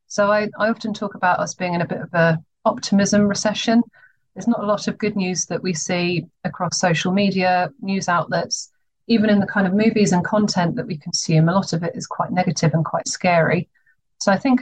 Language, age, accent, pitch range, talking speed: English, 40-59, British, 175-210 Hz, 220 wpm